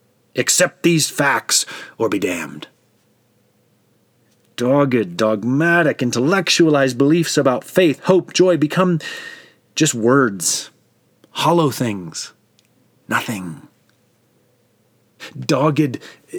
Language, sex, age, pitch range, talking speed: English, male, 30-49, 120-155 Hz, 75 wpm